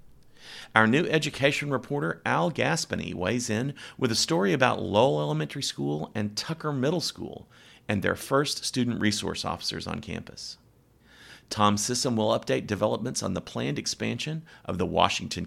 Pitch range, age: 100-135 Hz, 40-59